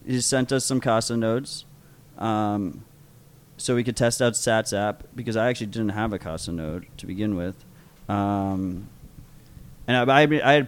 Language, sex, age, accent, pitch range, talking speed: English, male, 30-49, American, 110-130 Hz, 170 wpm